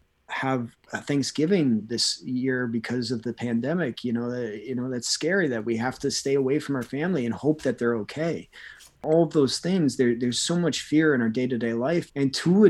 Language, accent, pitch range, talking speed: English, American, 115-140 Hz, 215 wpm